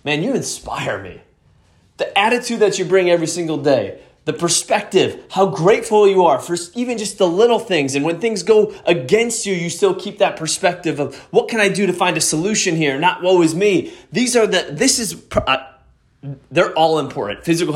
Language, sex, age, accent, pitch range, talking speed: English, male, 30-49, American, 120-180 Hz, 200 wpm